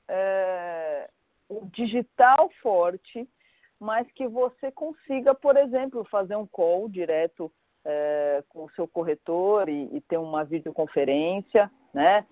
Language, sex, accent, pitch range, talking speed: Portuguese, female, Brazilian, 170-235 Hz, 120 wpm